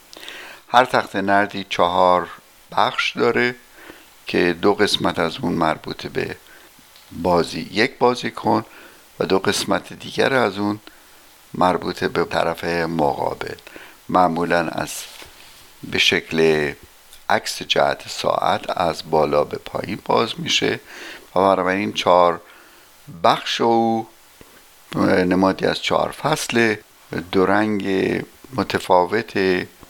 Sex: male